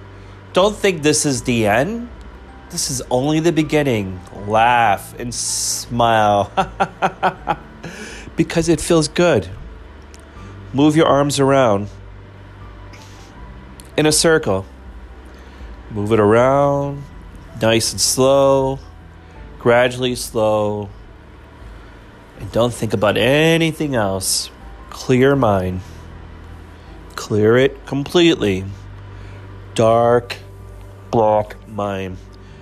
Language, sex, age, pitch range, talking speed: English, male, 30-49, 95-130 Hz, 90 wpm